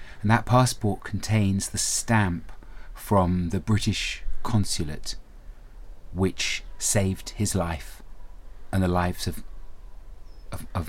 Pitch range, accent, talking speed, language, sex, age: 85-105 Hz, British, 110 wpm, English, male, 30-49